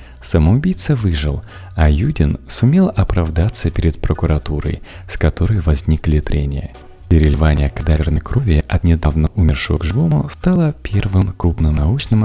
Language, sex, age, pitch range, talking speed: Russian, male, 30-49, 80-110 Hz, 120 wpm